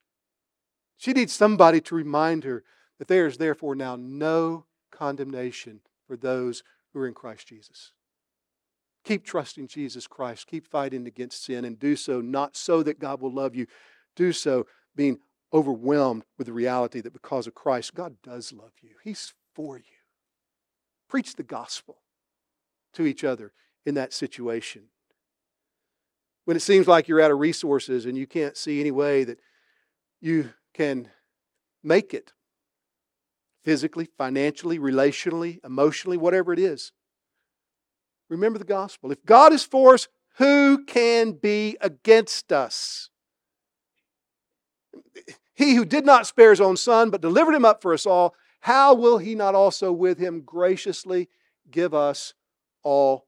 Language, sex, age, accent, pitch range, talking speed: English, male, 50-69, American, 135-215 Hz, 145 wpm